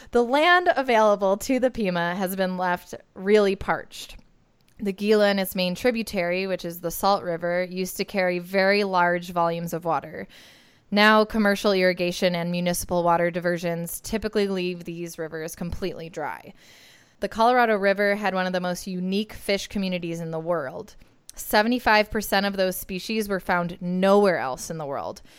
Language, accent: English, American